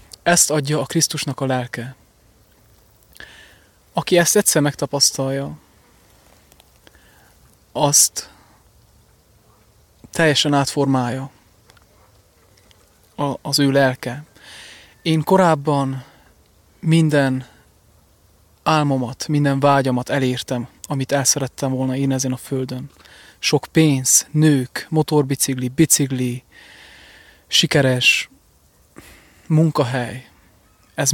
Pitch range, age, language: 125-155 Hz, 30-49, English